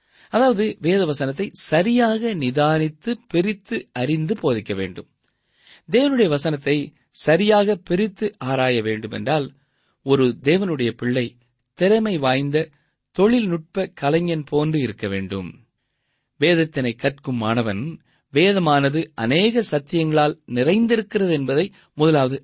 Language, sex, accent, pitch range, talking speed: Tamil, male, native, 120-185 Hz, 90 wpm